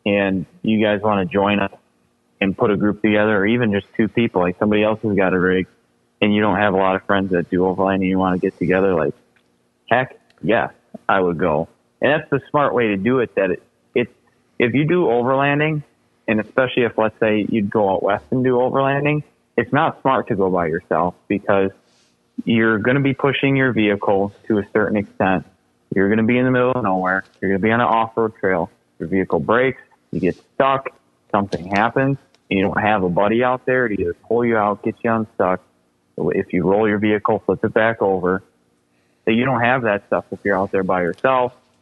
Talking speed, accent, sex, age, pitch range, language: 220 wpm, American, male, 20-39, 95-115 Hz, English